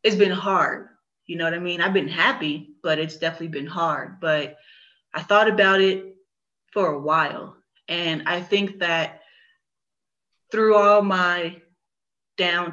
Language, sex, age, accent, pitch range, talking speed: English, female, 20-39, American, 160-190 Hz, 150 wpm